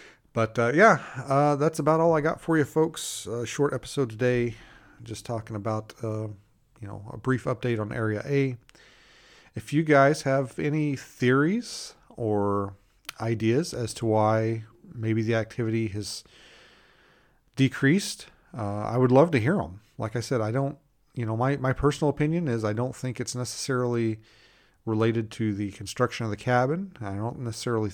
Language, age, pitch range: English, 40-59, 110-135 Hz